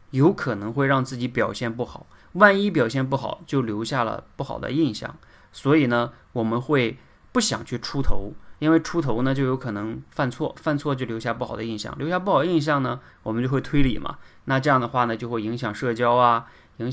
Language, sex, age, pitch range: Chinese, male, 20-39, 110-145 Hz